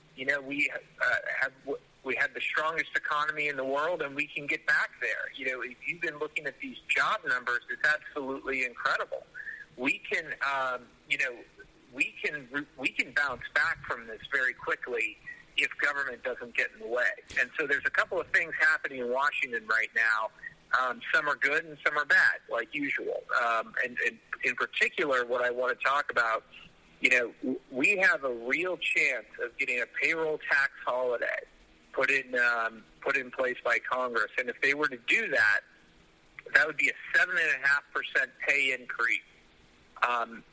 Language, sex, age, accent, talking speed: English, male, 50-69, American, 190 wpm